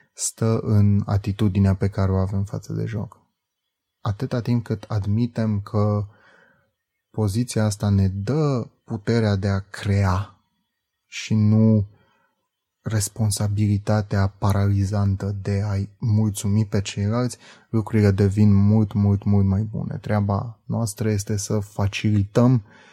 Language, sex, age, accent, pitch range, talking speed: Romanian, male, 20-39, native, 100-110 Hz, 115 wpm